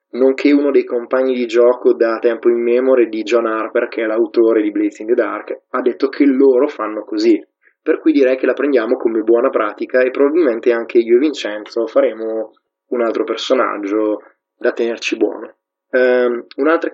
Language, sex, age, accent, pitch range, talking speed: Italian, male, 20-39, native, 120-170 Hz, 175 wpm